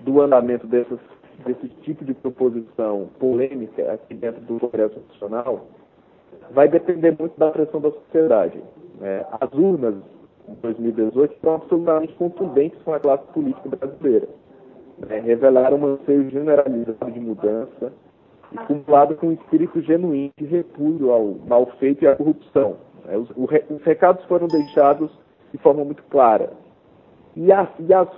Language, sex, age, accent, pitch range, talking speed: Portuguese, male, 40-59, Brazilian, 125-165 Hz, 145 wpm